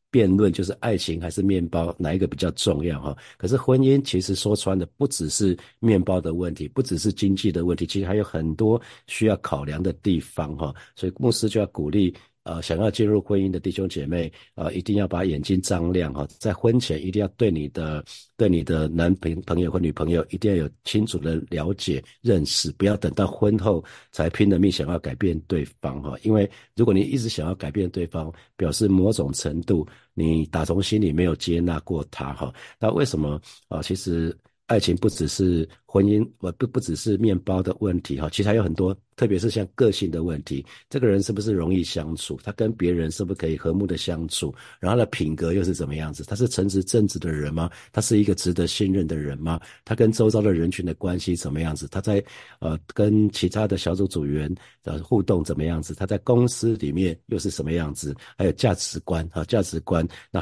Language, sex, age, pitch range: Chinese, male, 50-69, 80-105 Hz